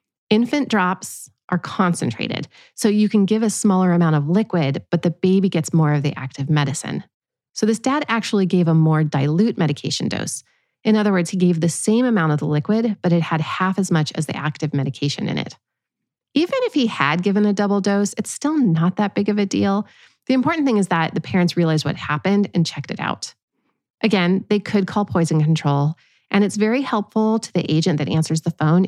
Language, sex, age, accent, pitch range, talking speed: English, female, 30-49, American, 155-210 Hz, 210 wpm